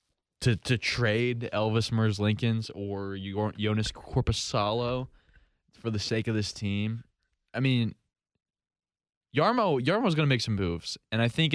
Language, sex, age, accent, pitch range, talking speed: English, male, 20-39, American, 105-130 Hz, 140 wpm